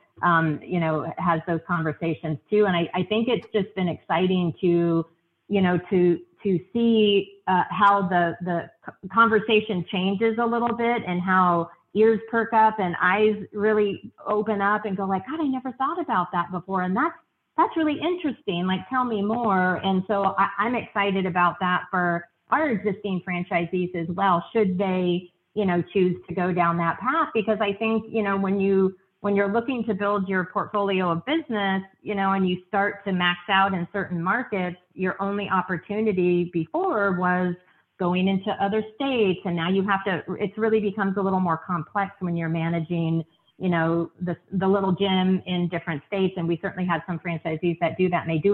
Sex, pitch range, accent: female, 175-210 Hz, American